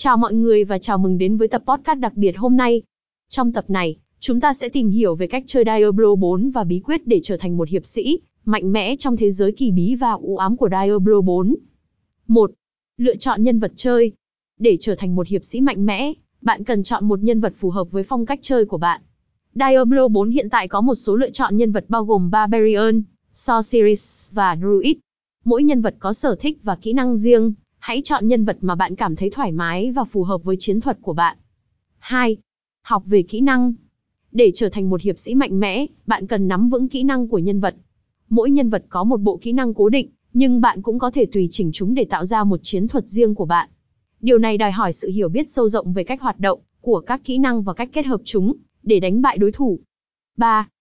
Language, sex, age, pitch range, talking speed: Vietnamese, female, 20-39, 195-250 Hz, 235 wpm